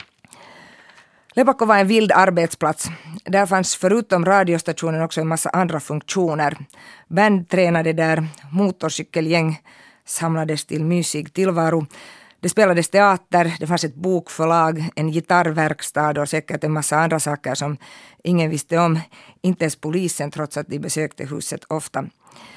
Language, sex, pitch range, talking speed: German, female, 155-185 Hz, 135 wpm